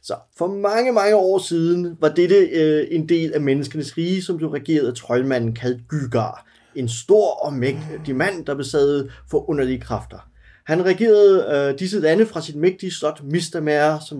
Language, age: Danish, 30-49